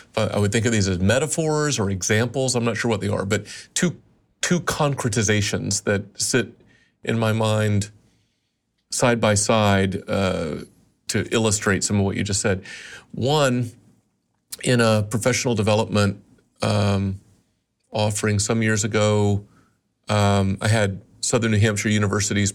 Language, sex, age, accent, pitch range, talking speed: English, male, 40-59, American, 100-115 Hz, 140 wpm